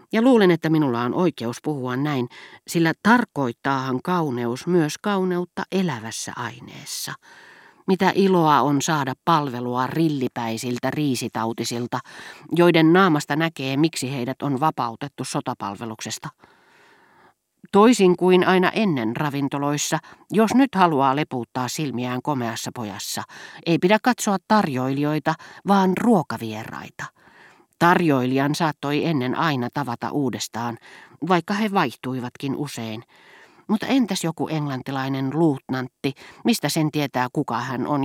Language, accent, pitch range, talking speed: Finnish, native, 125-175 Hz, 110 wpm